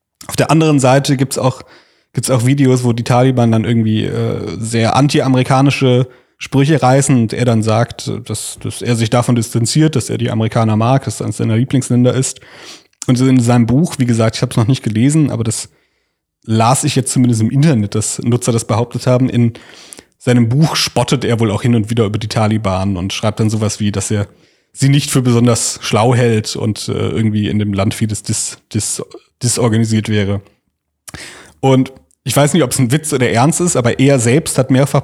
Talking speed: 205 wpm